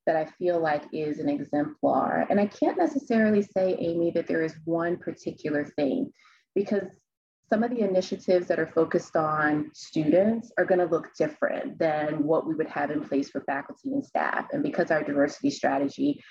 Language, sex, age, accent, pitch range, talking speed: English, female, 30-49, American, 155-200 Hz, 180 wpm